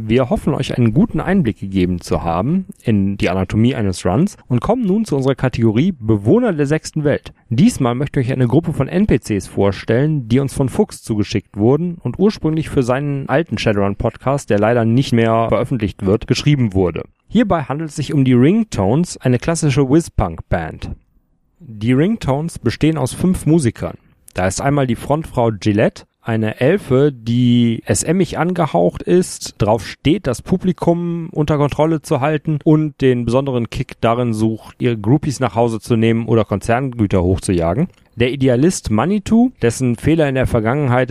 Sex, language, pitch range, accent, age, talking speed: male, German, 115-155 Hz, German, 30-49, 165 wpm